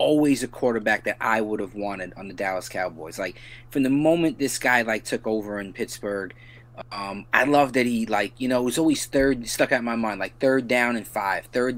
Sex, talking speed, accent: male, 235 wpm, American